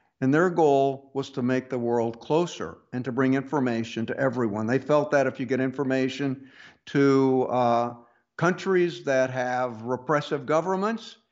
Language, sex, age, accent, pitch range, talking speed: English, male, 60-79, American, 130-160 Hz, 155 wpm